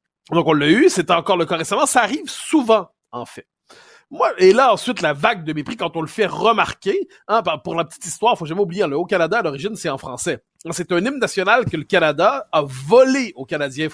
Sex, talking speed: male, 230 wpm